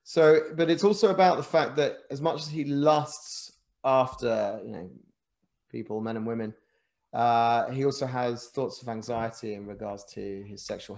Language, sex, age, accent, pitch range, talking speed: English, male, 30-49, British, 110-150 Hz, 175 wpm